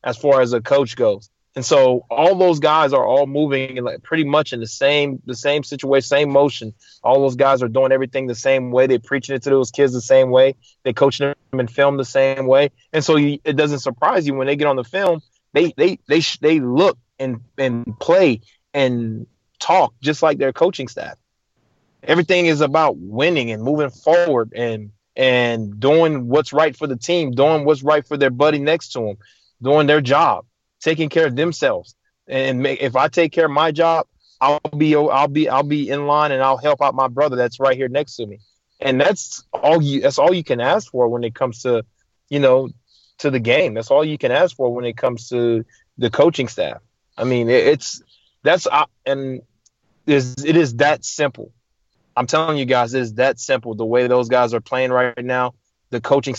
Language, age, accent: English, 20-39, American